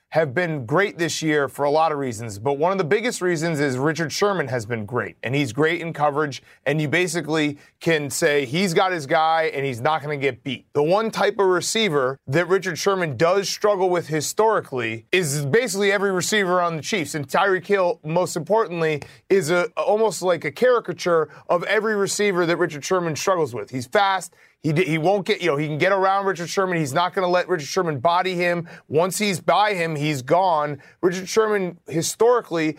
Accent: American